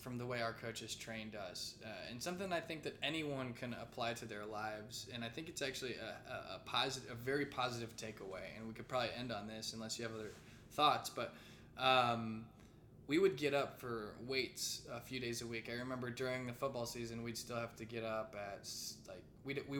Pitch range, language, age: 115-125 Hz, English, 20-39